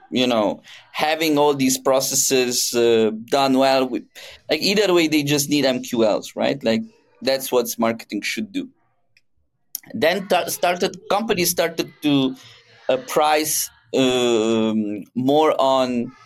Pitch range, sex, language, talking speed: 125-155 Hz, male, English, 130 wpm